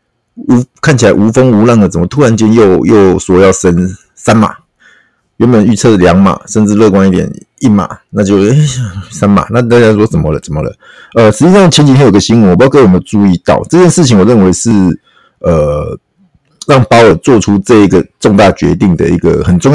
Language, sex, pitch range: Chinese, male, 100-135 Hz